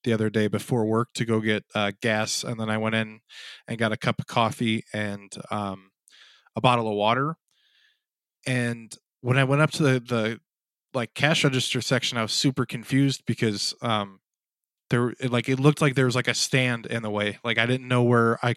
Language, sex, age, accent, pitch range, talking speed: English, male, 20-39, American, 115-140 Hz, 210 wpm